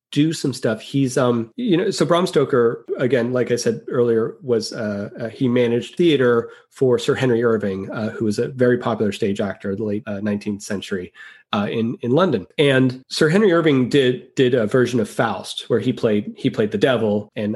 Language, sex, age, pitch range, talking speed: English, male, 30-49, 110-135 Hz, 205 wpm